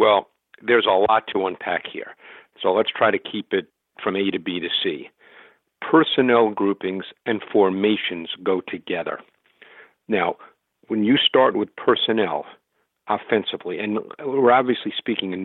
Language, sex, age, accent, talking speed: English, male, 50-69, American, 145 wpm